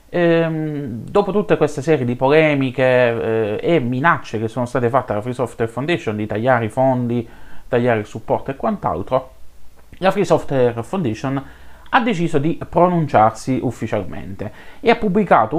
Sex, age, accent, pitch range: male, 30-49, native, 115-165 Hz